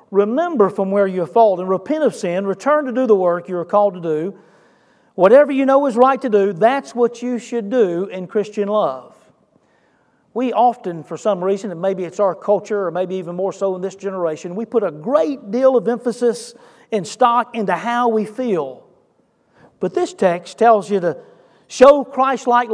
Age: 40-59